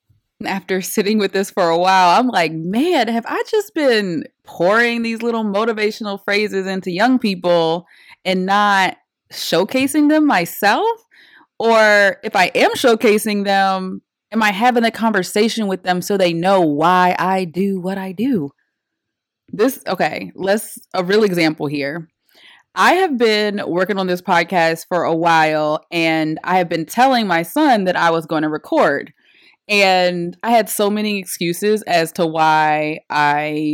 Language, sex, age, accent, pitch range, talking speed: English, female, 20-39, American, 165-215 Hz, 160 wpm